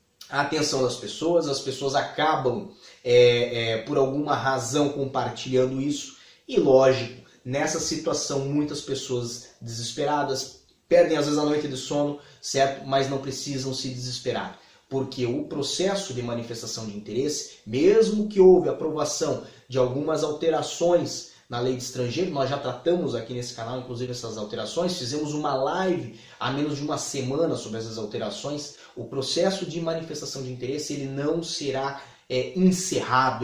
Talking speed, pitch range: 145 wpm, 130-150 Hz